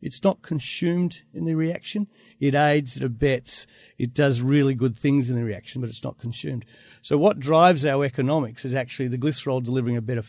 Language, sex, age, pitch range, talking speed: English, male, 50-69, 120-145 Hz, 200 wpm